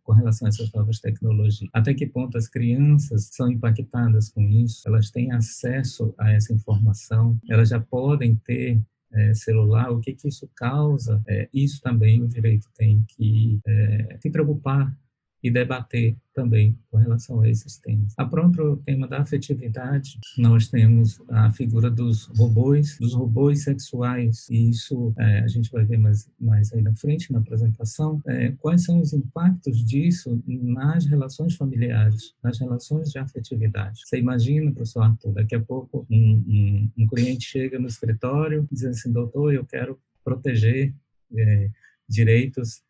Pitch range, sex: 110-130 Hz, male